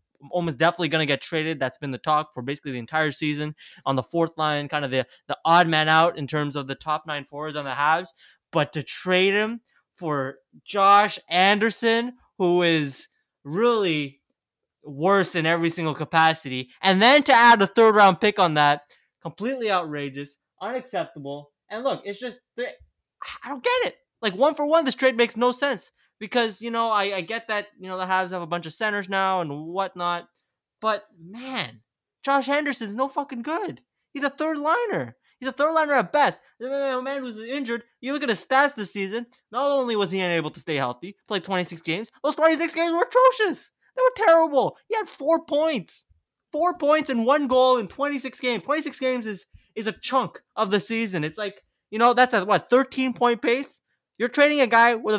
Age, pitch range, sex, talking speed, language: 20-39, 160-260 Hz, male, 200 wpm, English